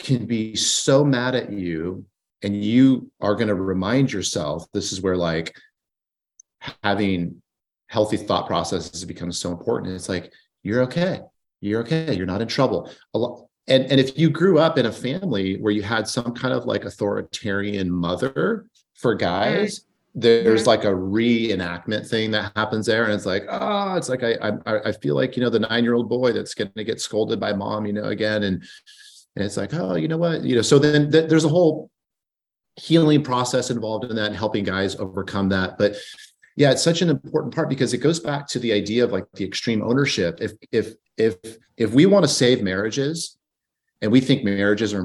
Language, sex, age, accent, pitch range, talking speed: English, male, 30-49, American, 100-135 Hz, 200 wpm